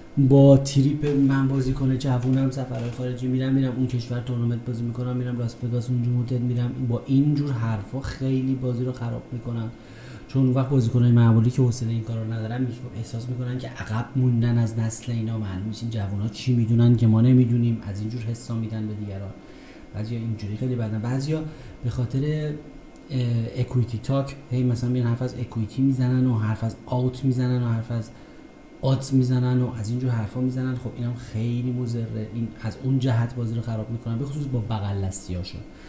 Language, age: Persian, 30-49